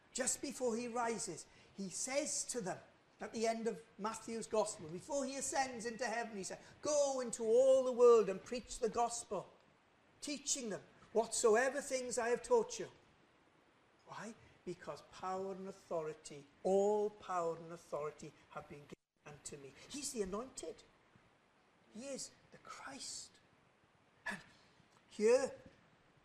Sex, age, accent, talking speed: male, 50-69, British, 140 wpm